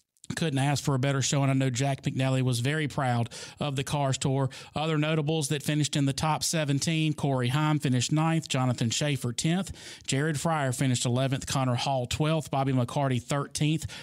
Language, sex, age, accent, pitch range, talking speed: English, male, 40-59, American, 135-155 Hz, 185 wpm